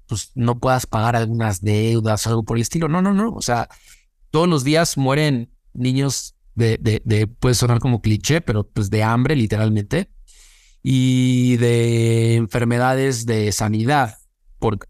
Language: Spanish